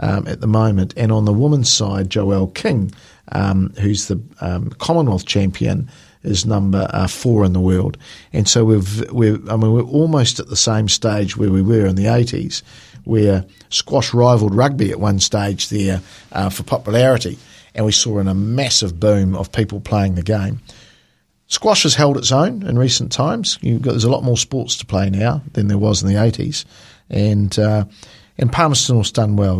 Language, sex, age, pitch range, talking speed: English, male, 50-69, 95-115 Hz, 195 wpm